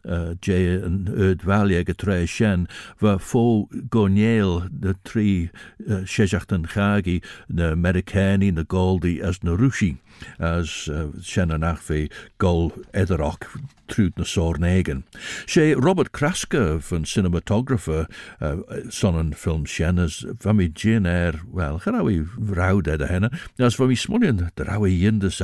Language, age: English, 60-79